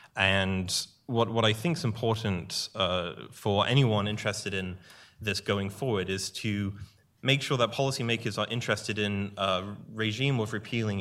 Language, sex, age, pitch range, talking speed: English, male, 20-39, 95-115 Hz, 155 wpm